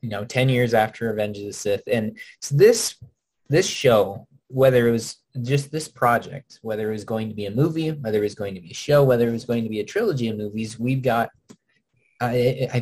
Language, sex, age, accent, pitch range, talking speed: English, male, 20-39, American, 110-130 Hz, 225 wpm